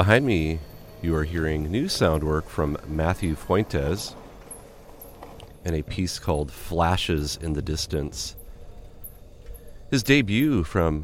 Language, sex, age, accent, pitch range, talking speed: English, male, 30-49, American, 80-95 Hz, 120 wpm